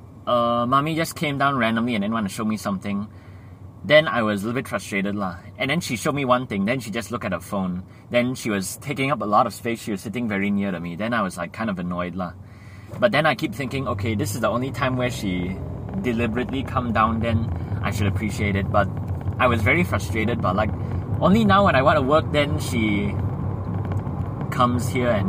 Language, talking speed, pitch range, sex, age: English, 235 wpm, 100-120 Hz, male, 20-39